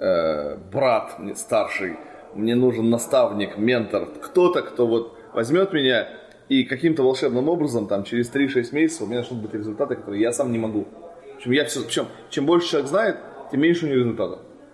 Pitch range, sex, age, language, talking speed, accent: 115-160 Hz, male, 20-39, Russian, 175 wpm, native